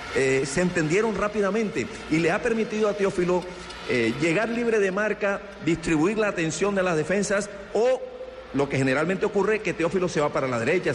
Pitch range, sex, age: 135-195 Hz, male, 50-69